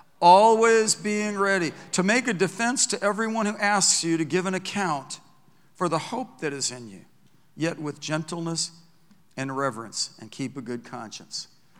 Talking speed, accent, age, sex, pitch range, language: 170 wpm, American, 50-69, male, 135-175 Hz, English